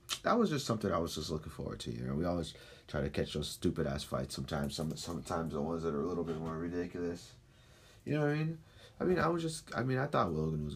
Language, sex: English, male